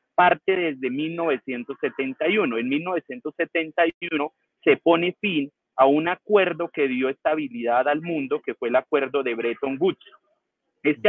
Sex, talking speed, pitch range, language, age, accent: male, 130 wpm, 120-165 Hz, Spanish, 30-49, Colombian